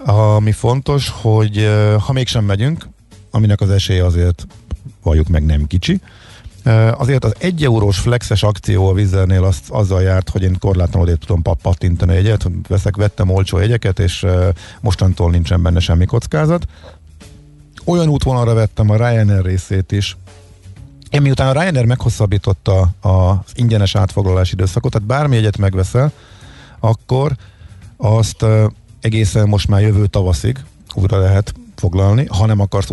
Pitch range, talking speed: 90-110 Hz, 135 wpm